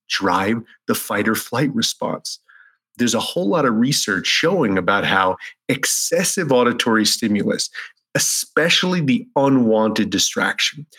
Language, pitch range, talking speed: English, 110-145 Hz, 120 wpm